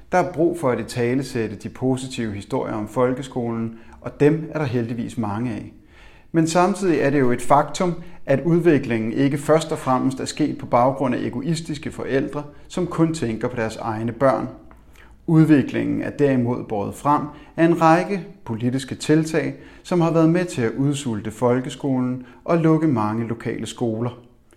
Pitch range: 115-145 Hz